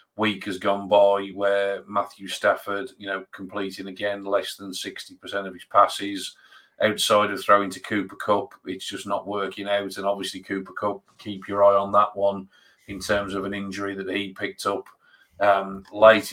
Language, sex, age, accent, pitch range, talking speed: English, male, 40-59, British, 95-105 Hz, 180 wpm